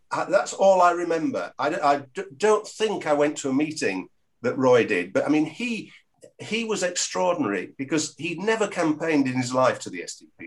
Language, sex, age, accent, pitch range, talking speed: English, male, 50-69, British, 135-220 Hz, 190 wpm